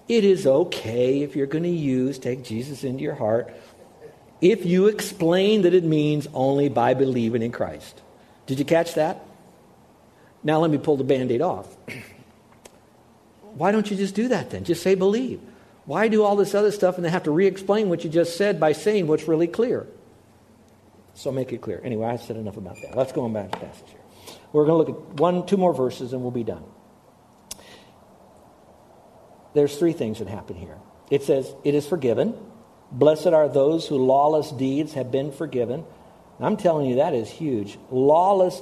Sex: male